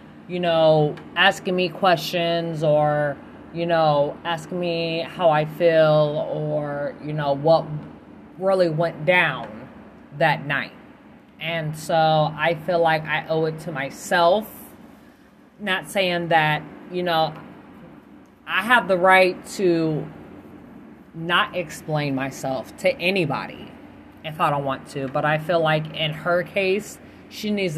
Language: English